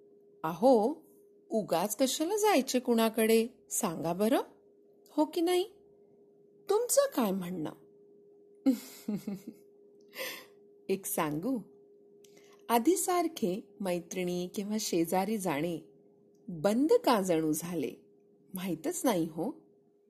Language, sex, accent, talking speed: Hindi, female, native, 65 wpm